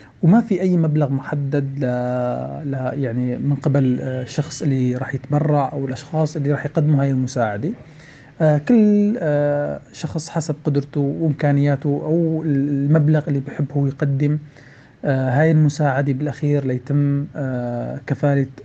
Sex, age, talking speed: male, 40-59, 115 wpm